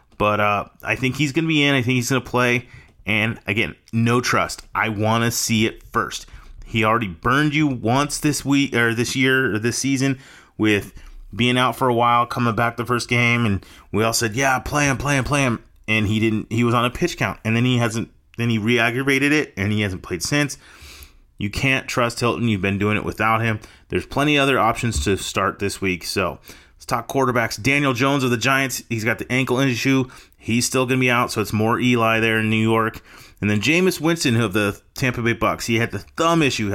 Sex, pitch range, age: male, 110-130 Hz, 30-49